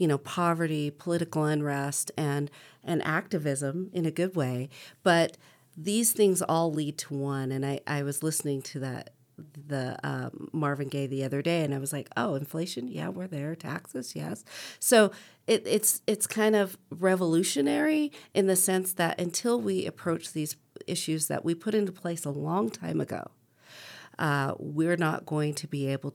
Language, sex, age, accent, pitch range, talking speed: English, female, 40-59, American, 140-175 Hz, 175 wpm